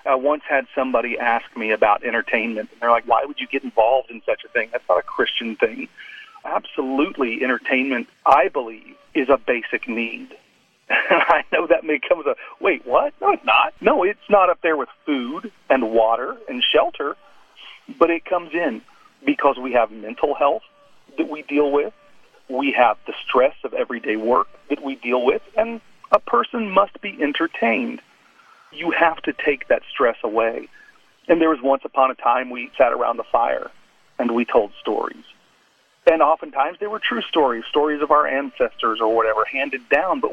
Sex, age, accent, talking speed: male, 40-59, American, 185 wpm